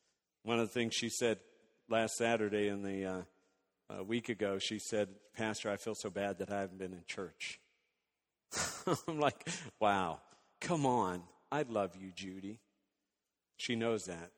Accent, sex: American, male